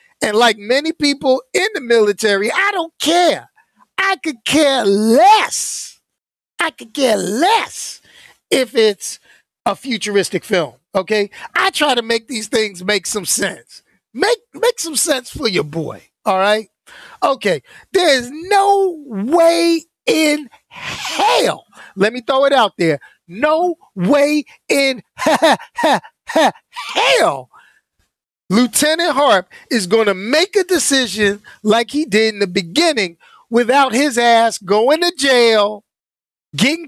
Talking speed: 130 wpm